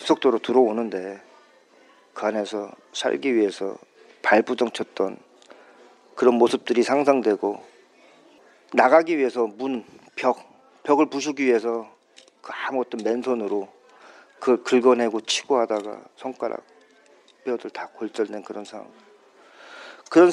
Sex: male